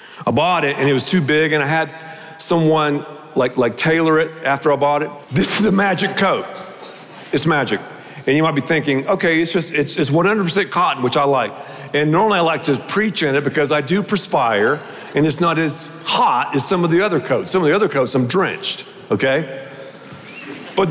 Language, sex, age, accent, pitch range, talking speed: English, male, 50-69, American, 145-195 Hz, 210 wpm